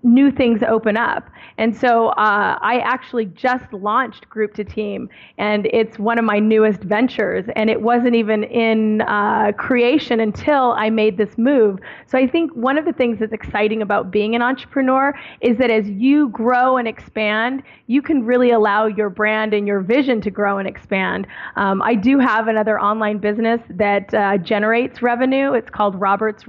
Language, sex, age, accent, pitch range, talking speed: English, female, 30-49, American, 205-235 Hz, 180 wpm